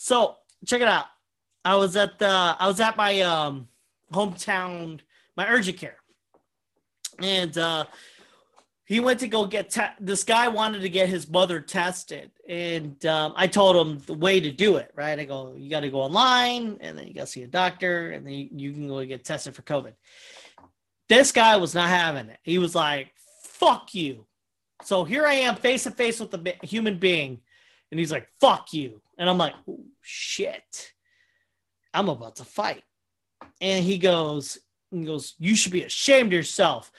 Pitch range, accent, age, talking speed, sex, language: 150-210 Hz, American, 30-49, 195 wpm, male, English